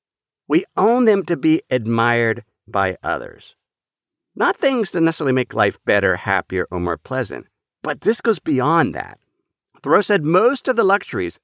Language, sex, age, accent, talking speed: English, male, 50-69, American, 155 wpm